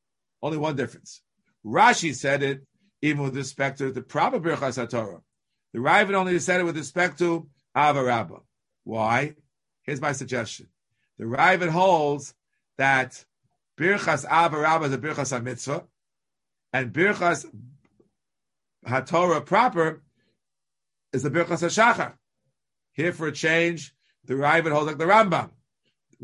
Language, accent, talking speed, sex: English, American, 130 wpm, male